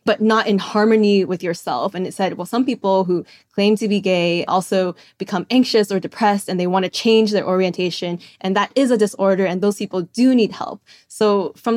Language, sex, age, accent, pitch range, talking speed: English, female, 20-39, American, 180-220 Hz, 210 wpm